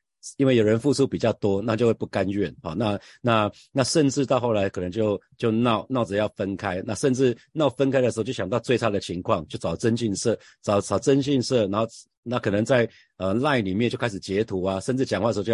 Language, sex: Chinese, male